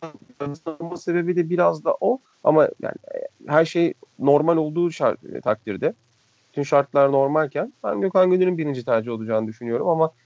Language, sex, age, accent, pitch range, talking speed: Turkish, male, 40-59, native, 120-155 Hz, 145 wpm